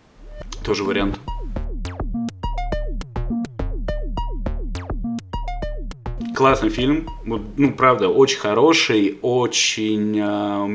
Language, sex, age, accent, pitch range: Russian, male, 30-49, native, 105-130 Hz